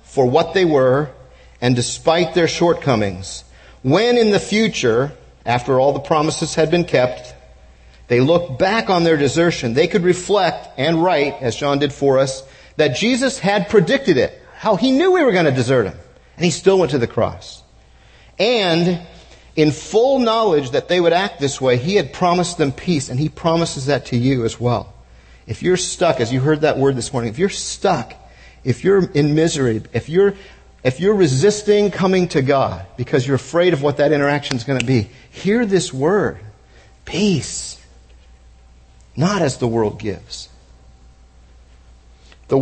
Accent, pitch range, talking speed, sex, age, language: American, 115-175 Hz, 175 wpm, male, 50-69, English